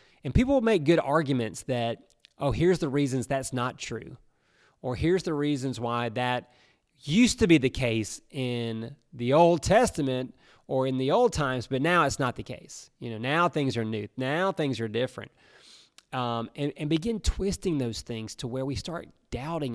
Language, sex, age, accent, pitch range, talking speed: English, male, 30-49, American, 120-155 Hz, 190 wpm